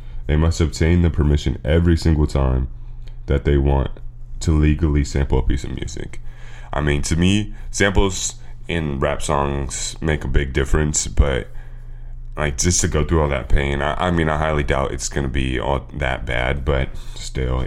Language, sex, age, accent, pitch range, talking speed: English, male, 20-39, American, 70-80 Hz, 180 wpm